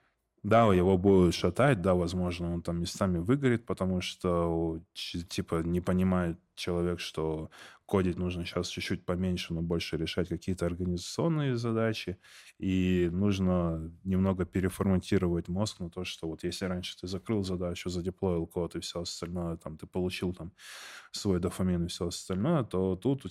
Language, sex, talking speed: Russian, male, 150 wpm